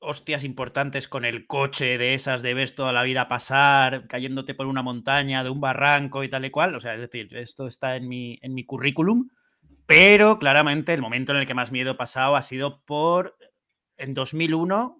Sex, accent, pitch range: male, Spanish, 120-145 Hz